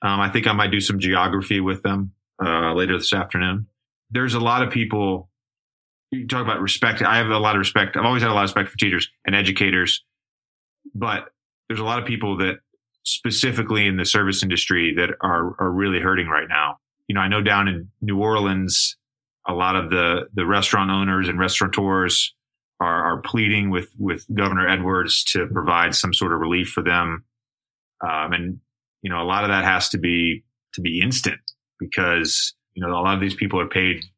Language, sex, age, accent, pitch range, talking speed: English, male, 30-49, American, 90-105 Hz, 200 wpm